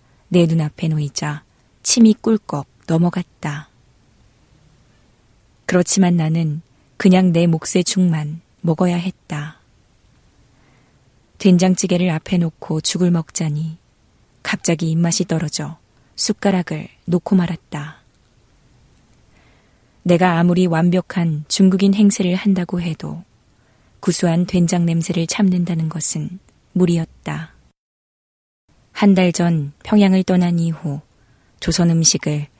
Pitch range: 150-180 Hz